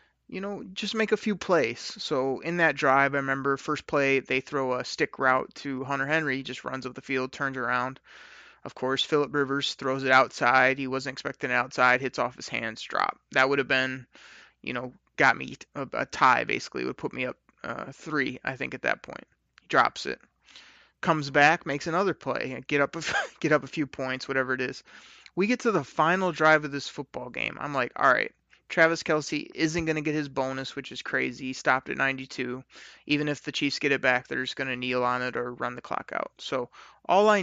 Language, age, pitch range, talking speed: English, 30-49, 130-150 Hz, 230 wpm